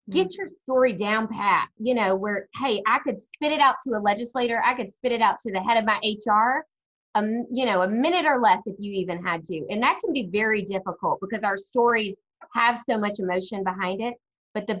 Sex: female